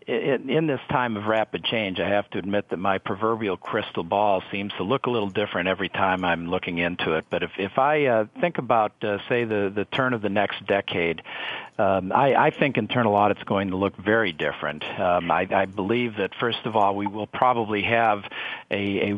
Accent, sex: American, male